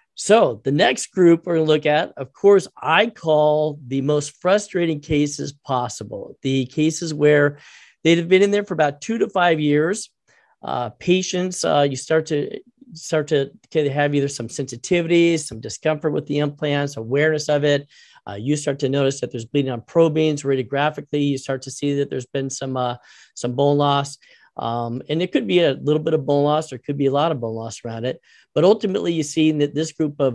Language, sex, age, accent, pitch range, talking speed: English, male, 40-59, American, 135-160 Hz, 210 wpm